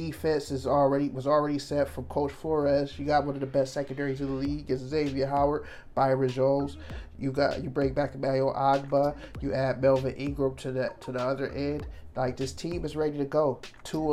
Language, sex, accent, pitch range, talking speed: English, male, American, 130-150 Hz, 210 wpm